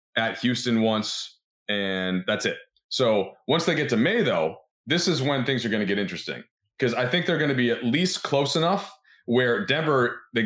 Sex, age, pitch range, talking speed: male, 30-49, 110-145 Hz, 205 wpm